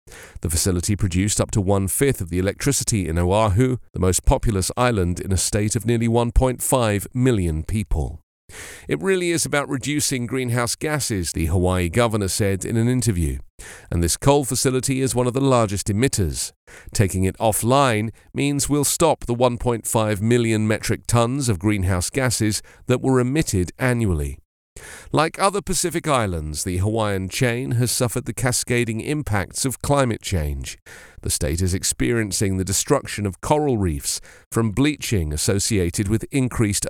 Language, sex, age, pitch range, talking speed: English, male, 40-59, 95-125 Hz, 155 wpm